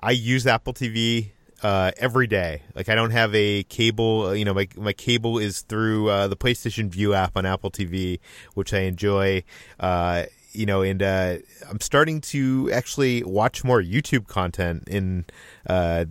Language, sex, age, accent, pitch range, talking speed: English, male, 30-49, American, 95-120 Hz, 170 wpm